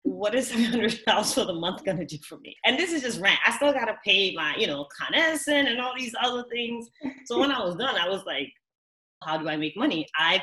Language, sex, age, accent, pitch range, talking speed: English, female, 20-39, American, 150-230 Hz, 260 wpm